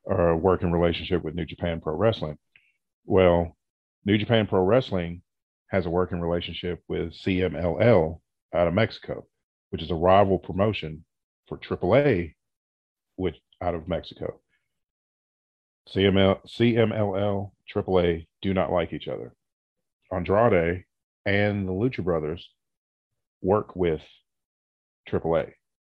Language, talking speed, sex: English, 110 wpm, male